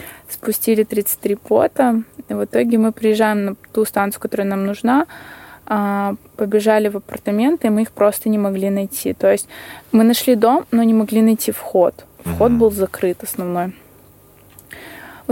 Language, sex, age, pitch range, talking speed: Russian, female, 20-39, 195-225 Hz, 150 wpm